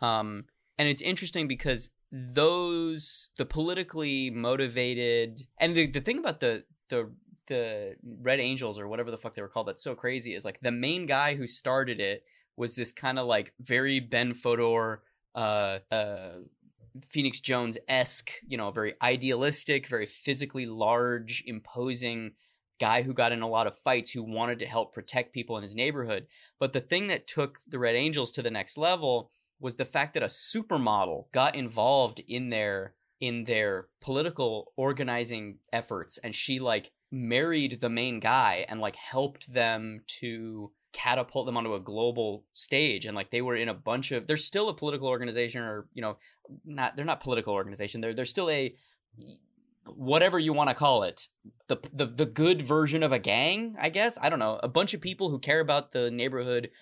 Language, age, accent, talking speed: English, 20-39, American, 180 wpm